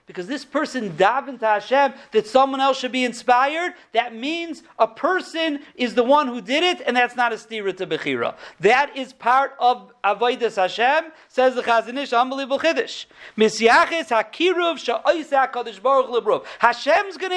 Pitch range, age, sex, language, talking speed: 225-280 Hz, 40-59, male, English, 140 wpm